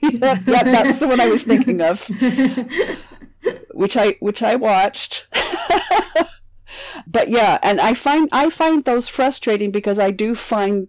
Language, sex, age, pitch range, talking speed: English, female, 50-69, 165-240 Hz, 155 wpm